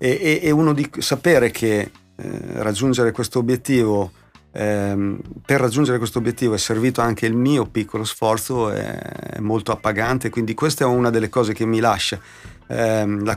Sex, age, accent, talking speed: male, 40-59, native, 145 wpm